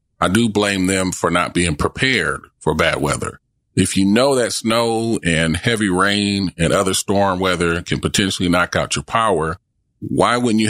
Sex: male